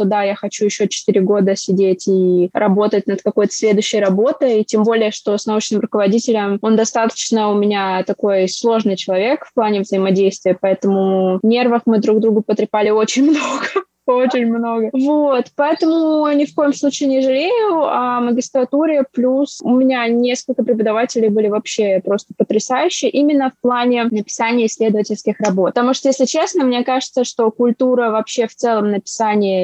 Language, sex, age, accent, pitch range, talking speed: Russian, female, 20-39, native, 205-255 Hz, 155 wpm